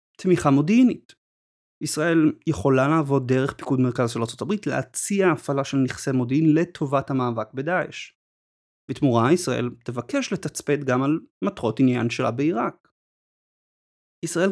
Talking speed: 125 wpm